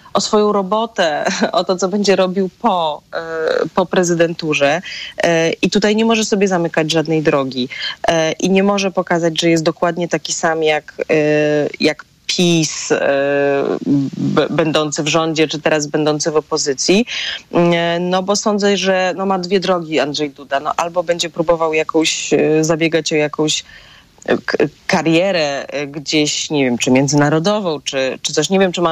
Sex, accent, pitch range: female, native, 155-180 Hz